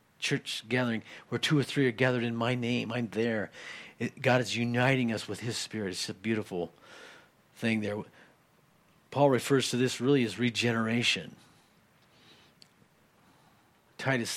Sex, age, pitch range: male, 50-69, 105-120 Hz